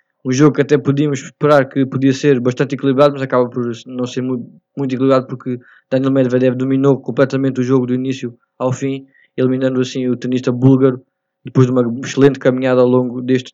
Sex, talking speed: male, 195 wpm